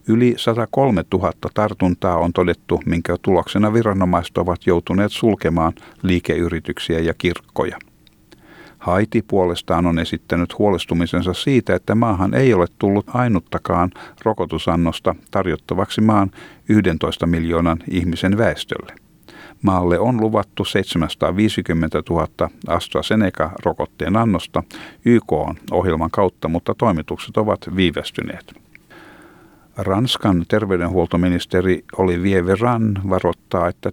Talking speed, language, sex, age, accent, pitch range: 95 wpm, Finnish, male, 50-69, native, 85-105 Hz